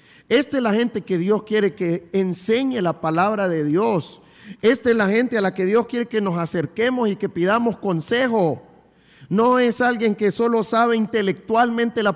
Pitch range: 175-225 Hz